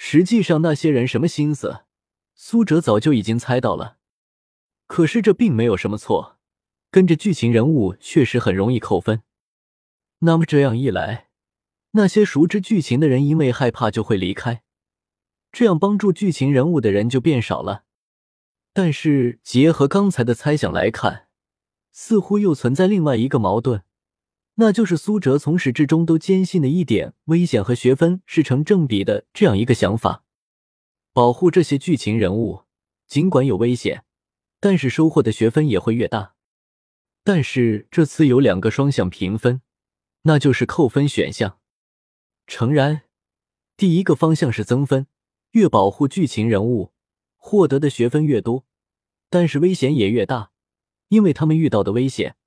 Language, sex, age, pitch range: Chinese, male, 20-39, 110-165 Hz